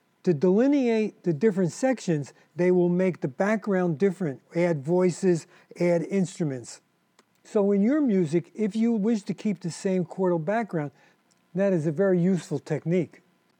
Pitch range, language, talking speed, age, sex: 175-220 Hz, English, 150 wpm, 50-69, male